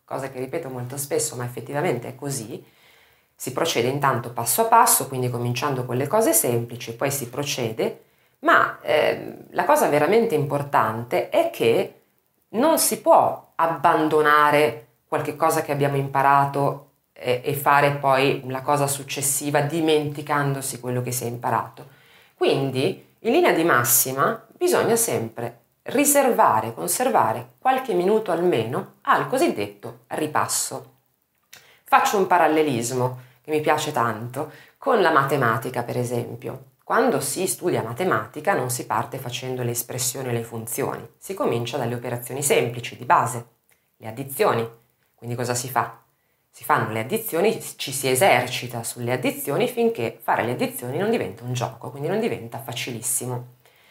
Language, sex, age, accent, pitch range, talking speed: Italian, female, 30-49, native, 120-155 Hz, 140 wpm